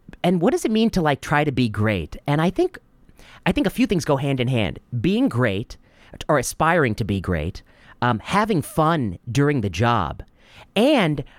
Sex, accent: male, American